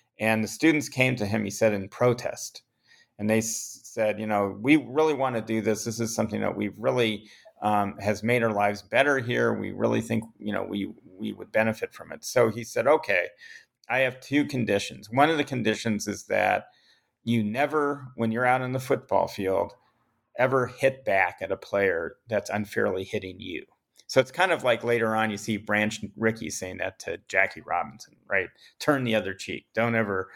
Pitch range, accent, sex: 105-135 Hz, American, male